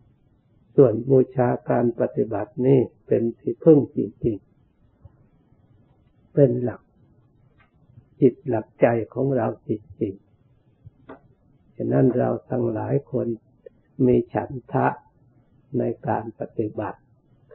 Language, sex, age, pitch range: Thai, male, 60-79, 110-130 Hz